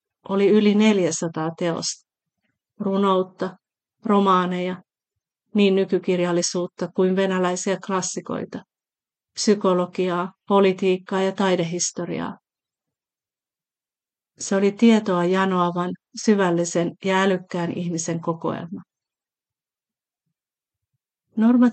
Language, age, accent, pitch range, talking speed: Finnish, 40-59, native, 180-205 Hz, 70 wpm